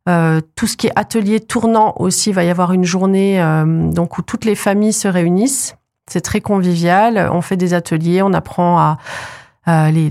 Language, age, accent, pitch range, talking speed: French, 40-59, French, 170-200 Hz, 195 wpm